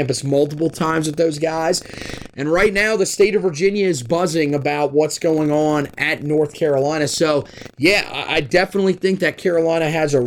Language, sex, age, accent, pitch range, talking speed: English, male, 30-49, American, 150-175 Hz, 175 wpm